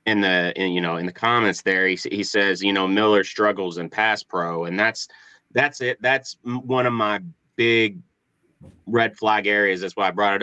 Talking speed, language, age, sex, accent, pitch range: 200 wpm, English, 30-49, male, American, 100-125 Hz